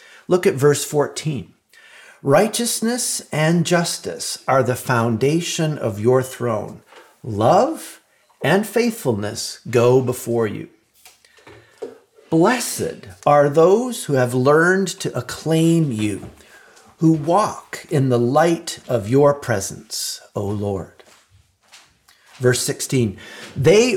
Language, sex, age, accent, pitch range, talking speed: English, male, 50-69, American, 125-175 Hz, 105 wpm